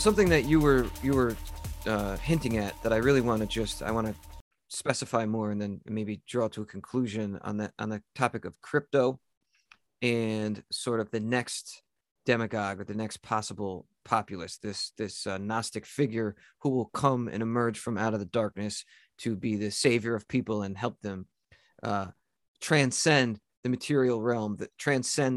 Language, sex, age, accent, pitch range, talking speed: English, male, 30-49, American, 105-130 Hz, 180 wpm